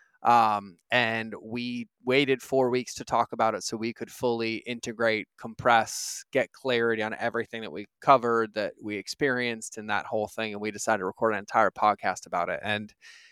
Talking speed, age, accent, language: 185 wpm, 20-39, American, English